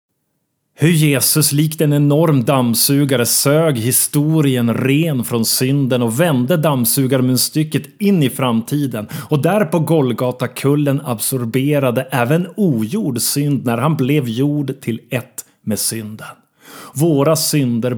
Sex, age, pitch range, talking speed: male, 30-49, 125-150 Hz, 125 wpm